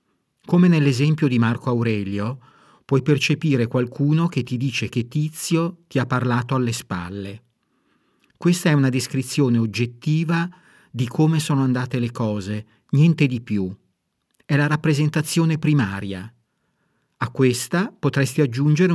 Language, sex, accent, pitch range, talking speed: Italian, male, native, 120-150 Hz, 125 wpm